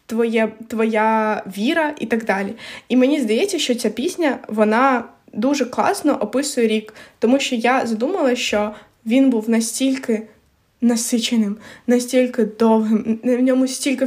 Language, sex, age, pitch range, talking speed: Ukrainian, female, 20-39, 230-270 Hz, 130 wpm